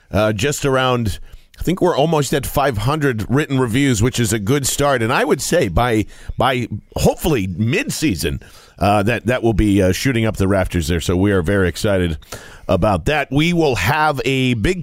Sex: male